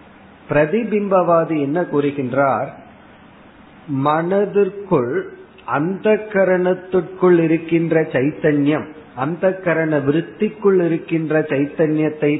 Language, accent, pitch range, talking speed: Tamil, native, 145-185 Hz, 65 wpm